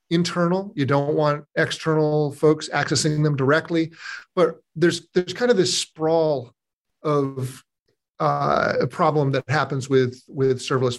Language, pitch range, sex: English, 140-175 Hz, male